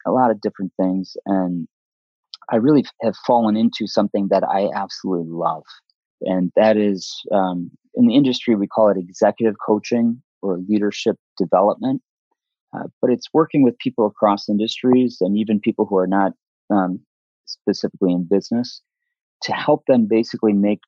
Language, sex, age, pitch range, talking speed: English, male, 30-49, 90-110 Hz, 155 wpm